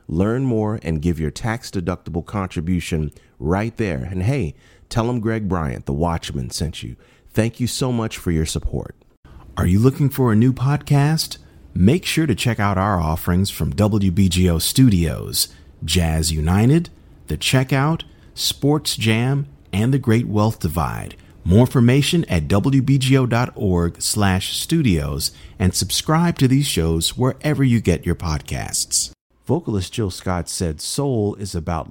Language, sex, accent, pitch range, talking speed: English, male, American, 80-115 Hz, 145 wpm